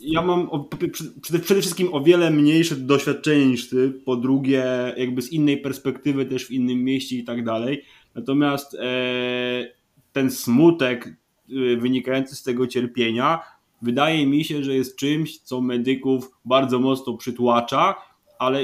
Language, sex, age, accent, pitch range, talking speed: Polish, male, 20-39, native, 125-165 Hz, 135 wpm